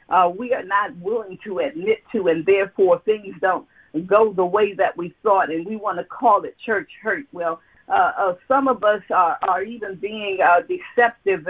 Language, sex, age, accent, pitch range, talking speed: English, female, 50-69, American, 185-255 Hz, 200 wpm